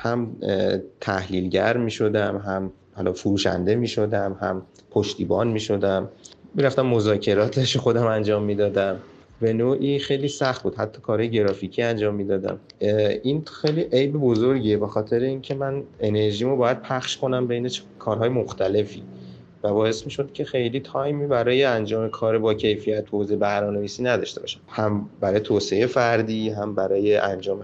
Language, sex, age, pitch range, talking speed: Persian, male, 30-49, 105-130 Hz, 150 wpm